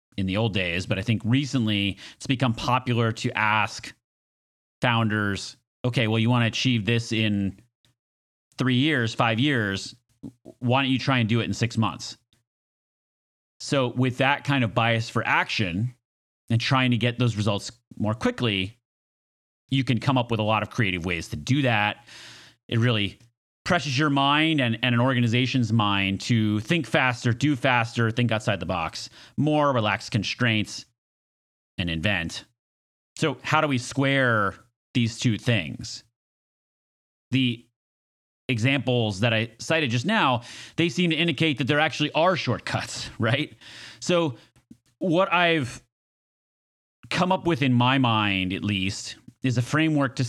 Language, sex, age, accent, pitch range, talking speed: English, male, 30-49, American, 105-130 Hz, 155 wpm